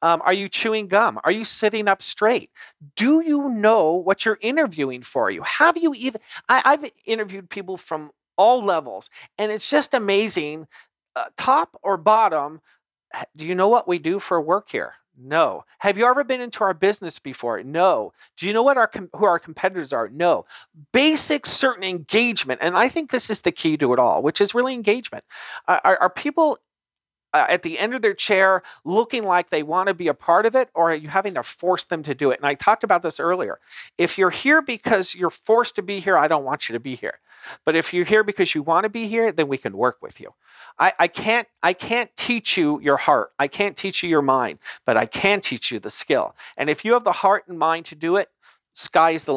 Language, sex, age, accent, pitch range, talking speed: English, male, 40-59, American, 160-230 Hz, 225 wpm